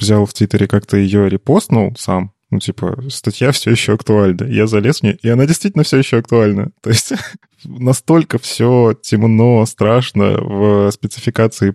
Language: Russian